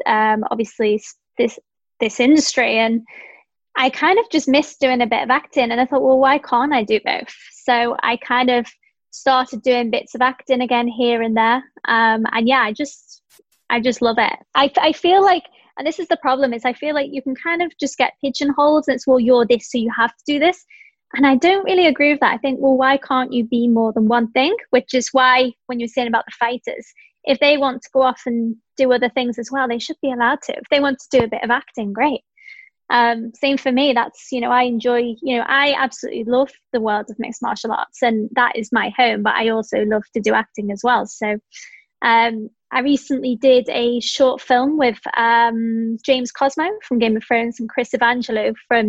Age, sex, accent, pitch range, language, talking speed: 20-39, female, British, 235-275 Hz, English, 230 wpm